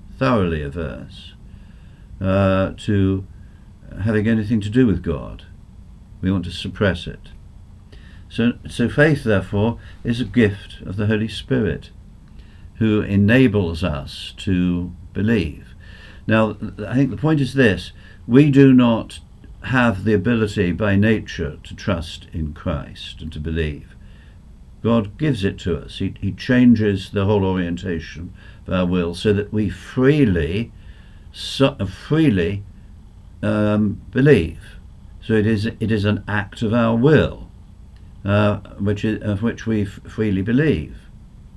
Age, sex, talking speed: 50-69, male, 135 wpm